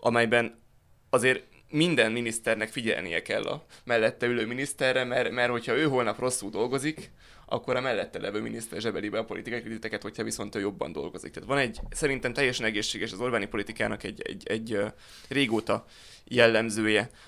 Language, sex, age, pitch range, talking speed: Hungarian, male, 20-39, 110-125 Hz, 155 wpm